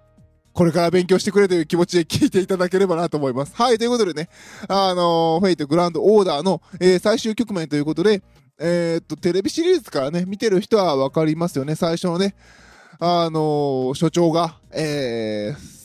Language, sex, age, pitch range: Japanese, male, 20-39, 150-205 Hz